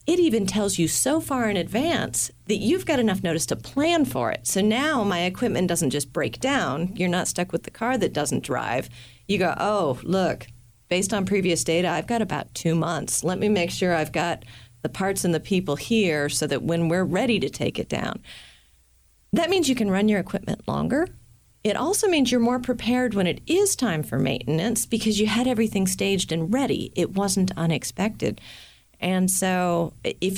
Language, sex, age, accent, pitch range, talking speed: English, female, 40-59, American, 165-225 Hz, 200 wpm